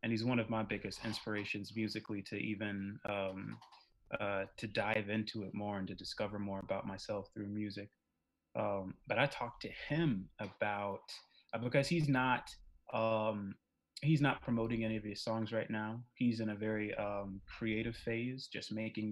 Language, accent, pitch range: English, American, 105-120 Hz